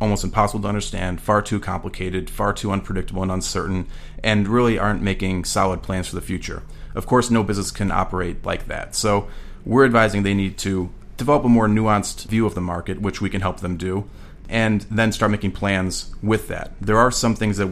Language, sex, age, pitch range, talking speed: English, male, 30-49, 95-105 Hz, 205 wpm